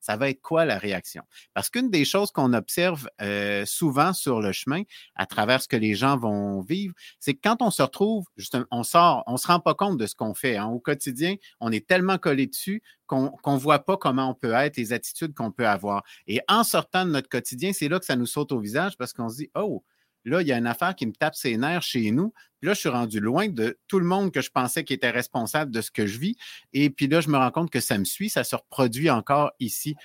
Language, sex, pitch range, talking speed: French, male, 120-160 Hz, 270 wpm